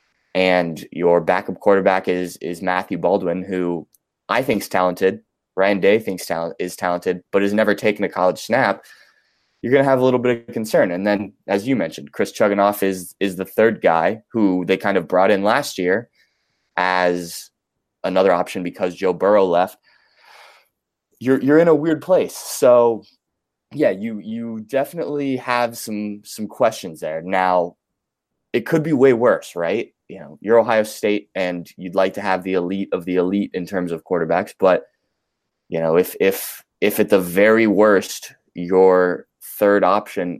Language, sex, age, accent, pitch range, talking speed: English, male, 20-39, American, 90-110 Hz, 175 wpm